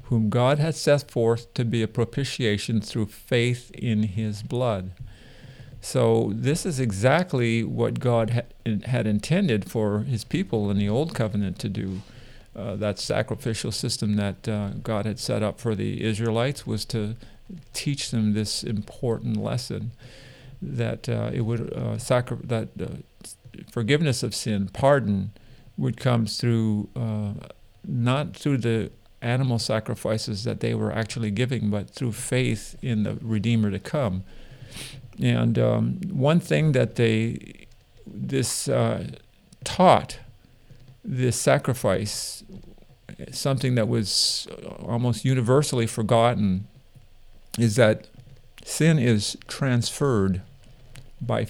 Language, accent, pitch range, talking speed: English, American, 110-125 Hz, 125 wpm